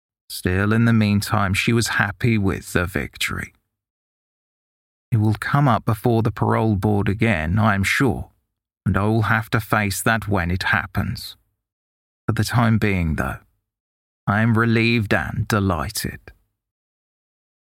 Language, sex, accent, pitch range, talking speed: English, male, British, 100-120 Hz, 140 wpm